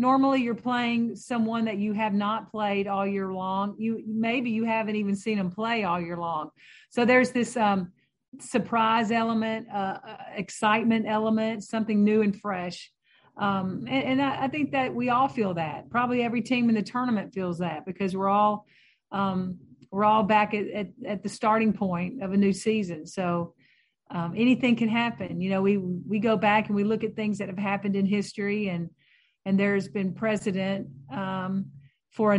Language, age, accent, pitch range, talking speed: English, 40-59, American, 195-225 Hz, 185 wpm